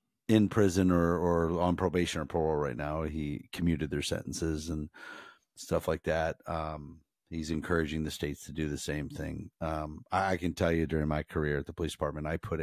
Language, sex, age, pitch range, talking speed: English, male, 40-59, 80-110 Hz, 200 wpm